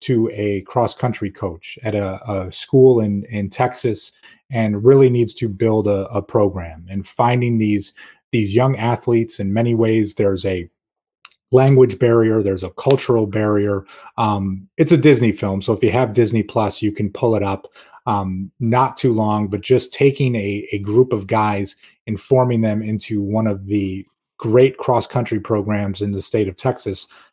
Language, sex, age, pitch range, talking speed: English, male, 30-49, 100-120 Hz, 175 wpm